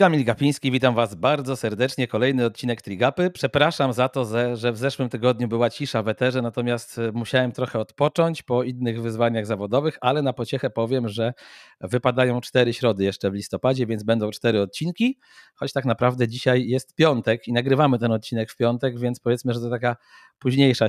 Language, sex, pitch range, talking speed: Polish, male, 120-140 Hz, 175 wpm